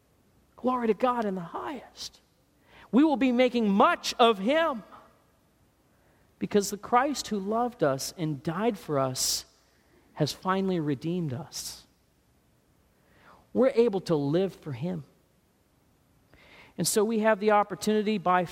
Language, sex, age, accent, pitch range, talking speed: English, male, 50-69, American, 160-240 Hz, 130 wpm